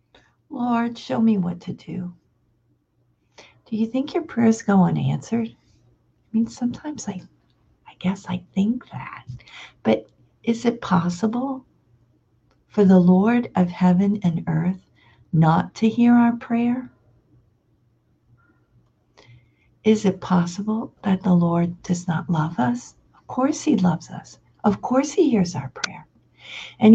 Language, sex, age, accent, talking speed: English, female, 50-69, American, 135 wpm